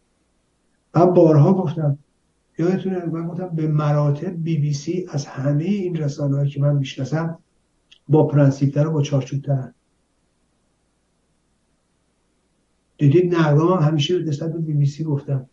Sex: male